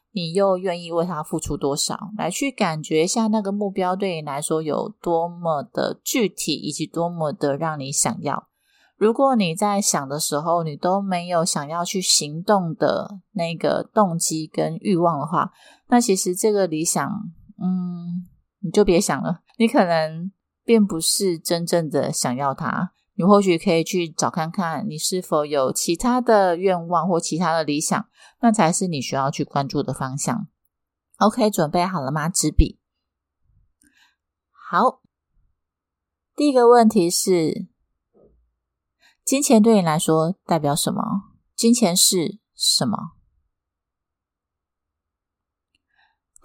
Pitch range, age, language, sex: 145-200 Hz, 30-49, Chinese, female